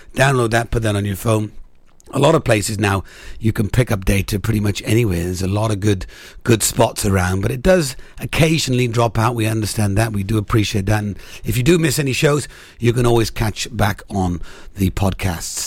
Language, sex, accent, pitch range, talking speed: English, male, British, 105-155 Hz, 215 wpm